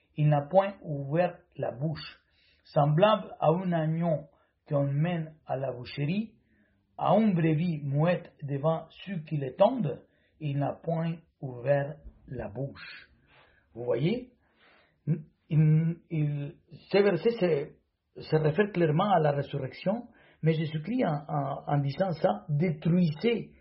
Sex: male